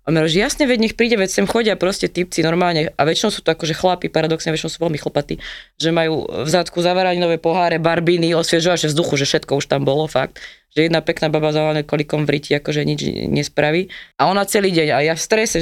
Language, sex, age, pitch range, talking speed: Slovak, female, 20-39, 150-185 Hz, 220 wpm